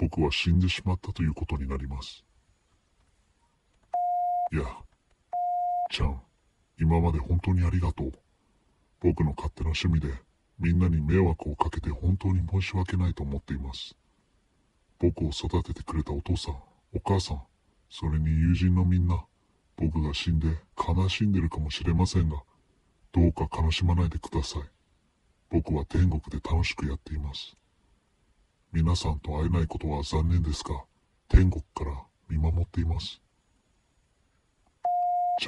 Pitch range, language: 80-95 Hz, Japanese